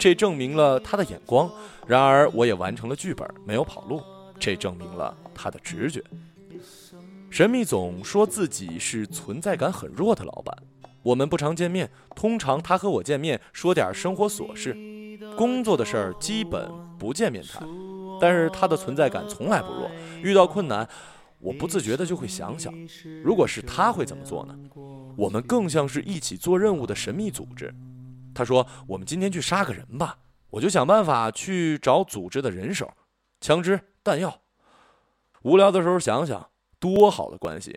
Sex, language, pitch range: male, Chinese, 130-190 Hz